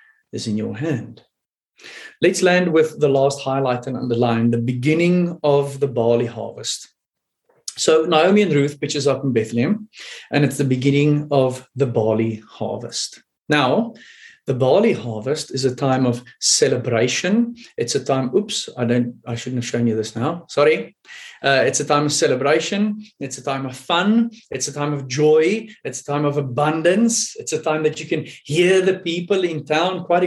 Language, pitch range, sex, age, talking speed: English, 140-205 Hz, male, 30-49, 180 wpm